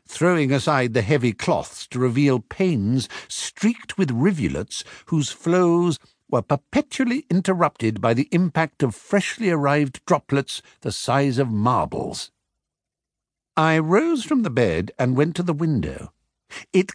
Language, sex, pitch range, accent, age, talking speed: English, male, 115-195 Hz, British, 60-79, 135 wpm